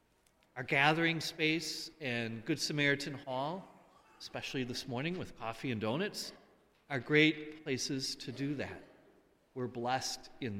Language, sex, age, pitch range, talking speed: English, male, 40-59, 130-165 Hz, 130 wpm